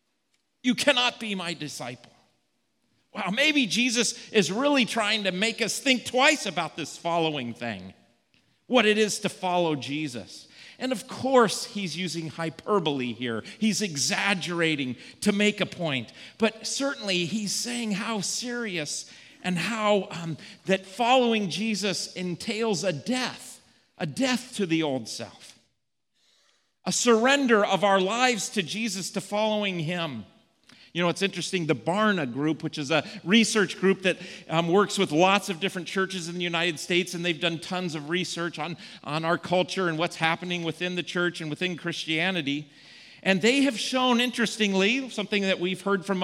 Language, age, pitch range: English, 40-59, 170-215 Hz